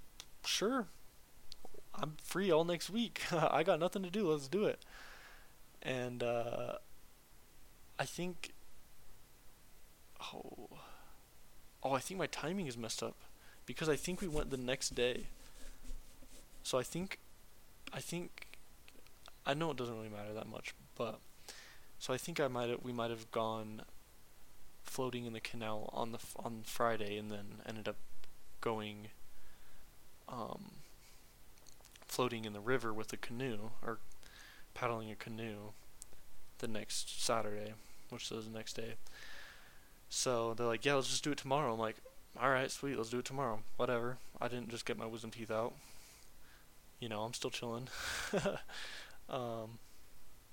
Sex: male